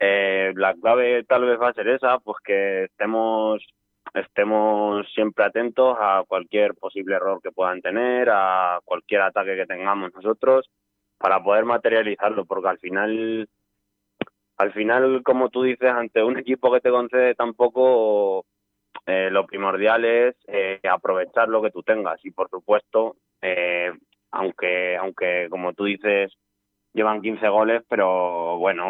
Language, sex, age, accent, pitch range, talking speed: Spanish, male, 20-39, Spanish, 95-110 Hz, 145 wpm